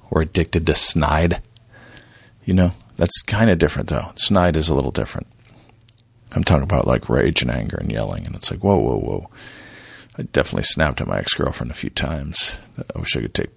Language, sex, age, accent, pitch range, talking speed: English, male, 50-69, American, 80-115 Hz, 205 wpm